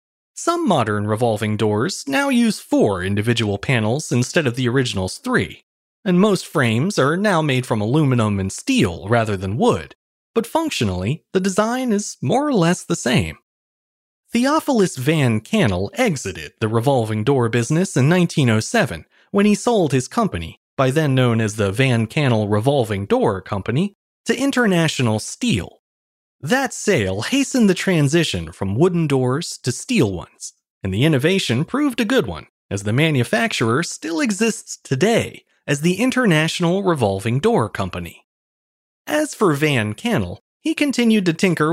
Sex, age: male, 30-49